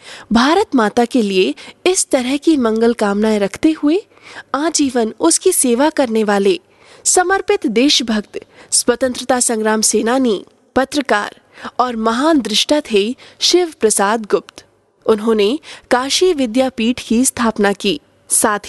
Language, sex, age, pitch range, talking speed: Hindi, female, 20-39, 220-315 Hz, 115 wpm